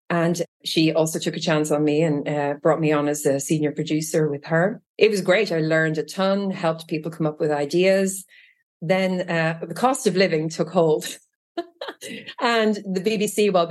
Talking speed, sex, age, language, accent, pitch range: 195 wpm, female, 30-49, English, Irish, 150-180 Hz